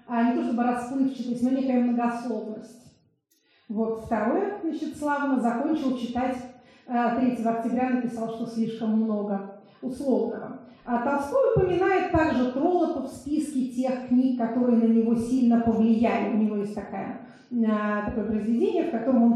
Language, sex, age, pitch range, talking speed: Russian, female, 30-49, 225-255 Hz, 135 wpm